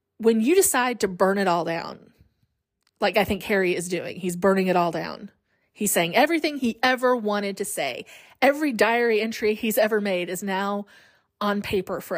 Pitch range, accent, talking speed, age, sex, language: 195-265 Hz, American, 185 wpm, 30-49, female, English